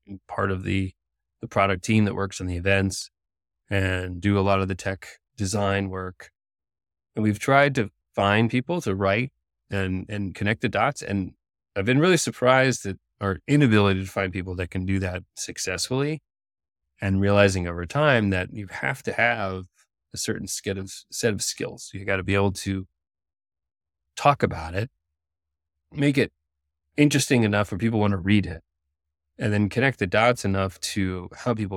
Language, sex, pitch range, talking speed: English, male, 90-105 Hz, 175 wpm